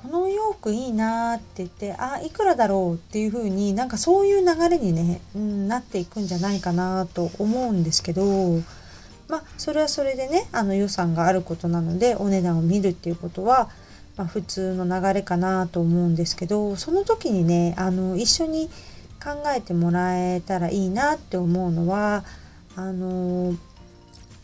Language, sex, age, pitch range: Japanese, female, 30-49, 175-230 Hz